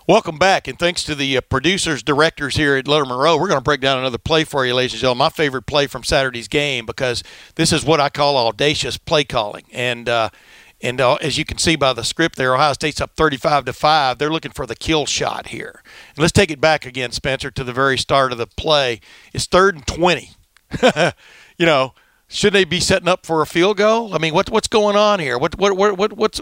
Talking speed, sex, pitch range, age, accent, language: 240 wpm, male, 135-165 Hz, 60-79, American, English